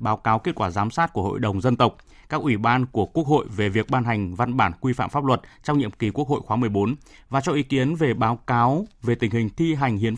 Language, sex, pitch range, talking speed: Vietnamese, male, 115-145 Hz, 275 wpm